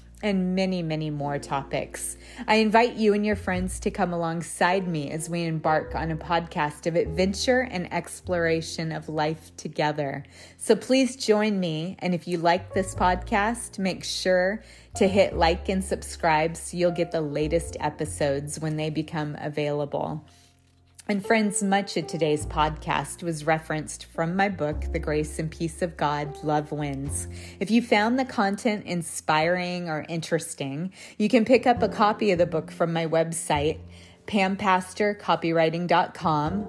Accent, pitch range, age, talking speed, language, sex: American, 150-185 Hz, 30-49, 155 wpm, English, female